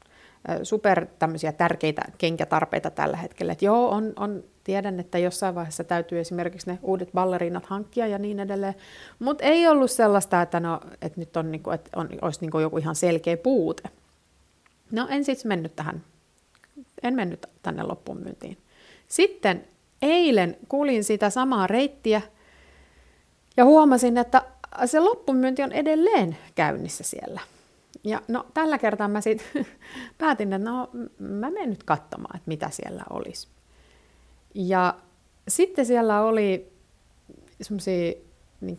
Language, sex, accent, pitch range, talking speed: Finnish, female, native, 165-220 Hz, 130 wpm